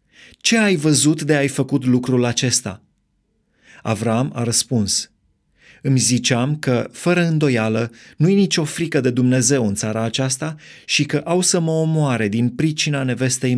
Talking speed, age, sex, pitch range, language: 145 wpm, 30-49, male, 115-145 Hz, Romanian